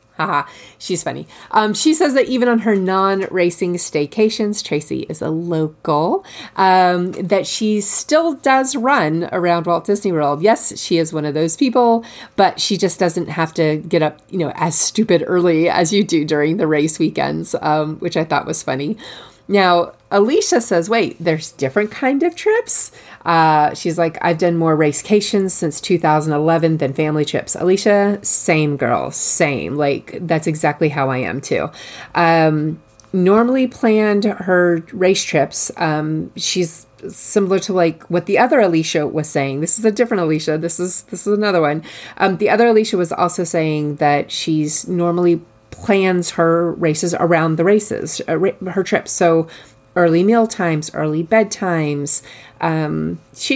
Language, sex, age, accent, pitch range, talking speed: English, female, 30-49, American, 155-200 Hz, 160 wpm